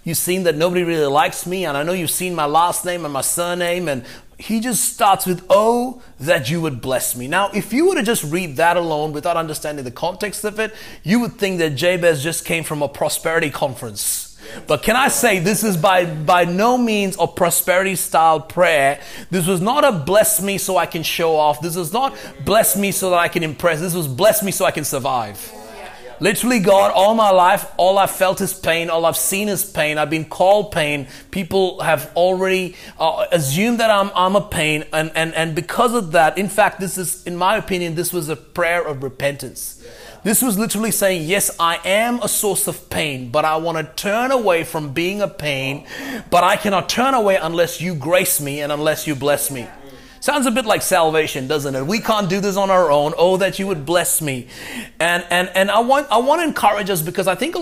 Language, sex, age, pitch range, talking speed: English, male, 30-49, 155-200 Hz, 225 wpm